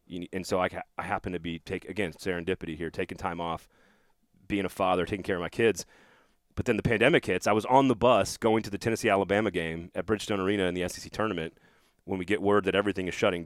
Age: 30-49